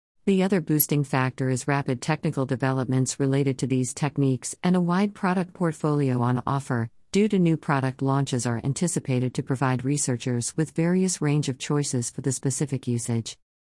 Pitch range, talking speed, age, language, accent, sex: 130-155 Hz, 165 wpm, 50-69, English, American, female